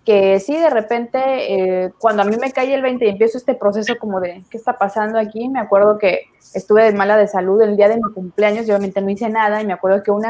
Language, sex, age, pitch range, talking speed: Spanish, female, 20-39, 205-265 Hz, 260 wpm